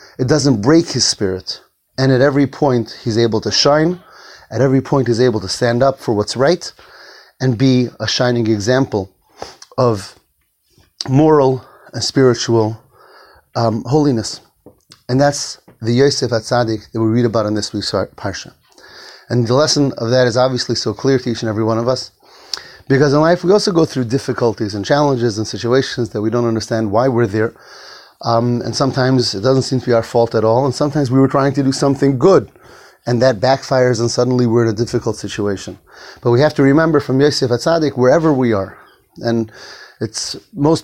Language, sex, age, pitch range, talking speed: English, male, 30-49, 115-140 Hz, 190 wpm